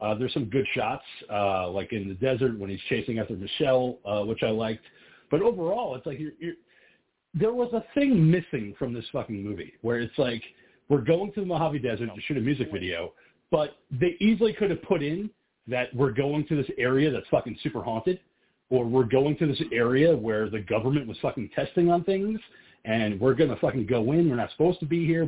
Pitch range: 115-165 Hz